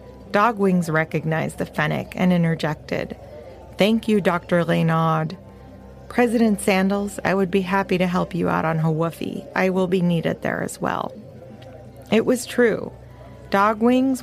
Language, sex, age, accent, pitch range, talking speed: English, female, 30-49, American, 170-225 Hz, 140 wpm